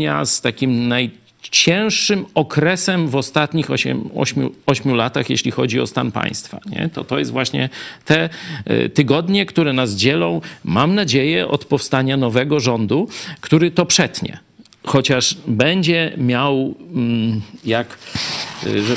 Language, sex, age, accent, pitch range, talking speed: Polish, male, 50-69, native, 120-170 Hz, 125 wpm